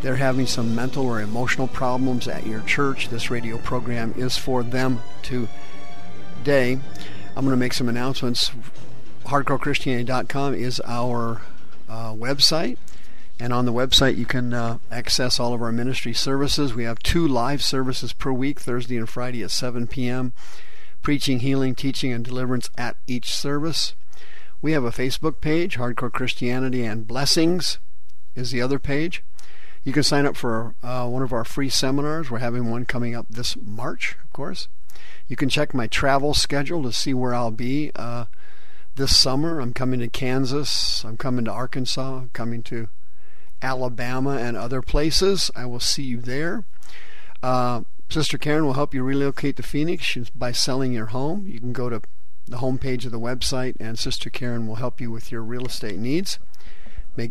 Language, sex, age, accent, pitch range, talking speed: English, male, 50-69, American, 120-135 Hz, 170 wpm